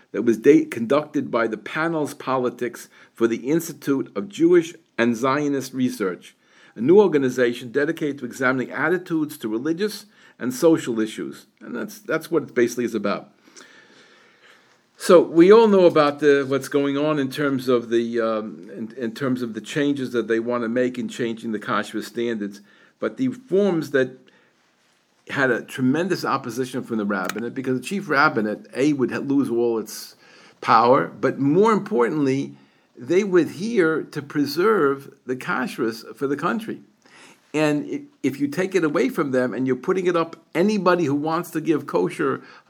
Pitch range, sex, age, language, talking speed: 120-170 Hz, male, 50-69, English, 165 wpm